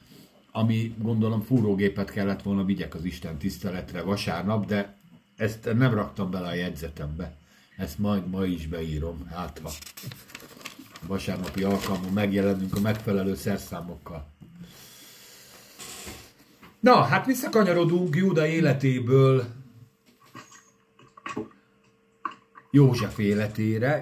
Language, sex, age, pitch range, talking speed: Hungarian, male, 60-79, 100-120 Hz, 90 wpm